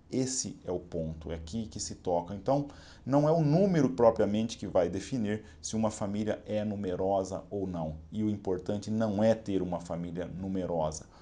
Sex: male